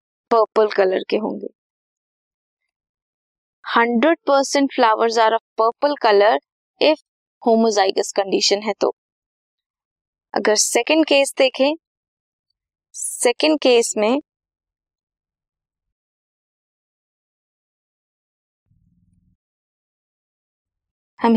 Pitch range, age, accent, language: 185-270 Hz, 20-39, native, Hindi